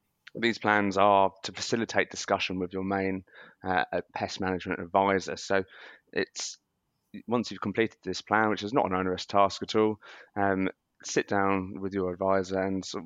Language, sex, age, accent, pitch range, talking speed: English, male, 20-39, British, 95-105 Hz, 160 wpm